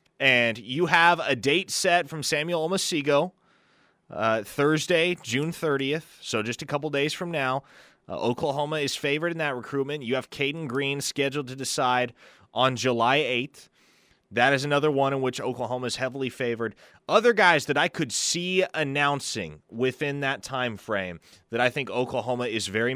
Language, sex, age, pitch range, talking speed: English, male, 30-49, 125-155 Hz, 165 wpm